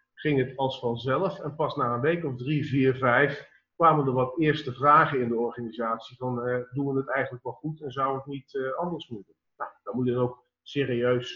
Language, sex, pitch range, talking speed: Dutch, male, 125-160 Hz, 225 wpm